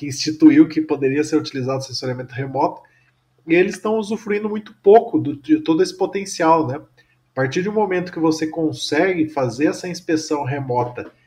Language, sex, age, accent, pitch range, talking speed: Portuguese, male, 20-39, Brazilian, 130-165 Hz, 165 wpm